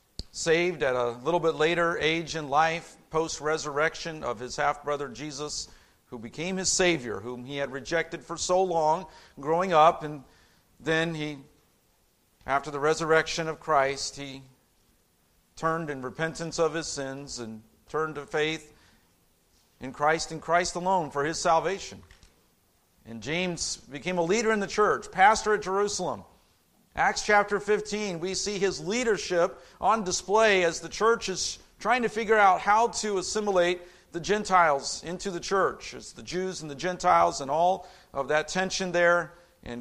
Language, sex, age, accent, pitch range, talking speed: English, male, 50-69, American, 145-180 Hz, 155 wpm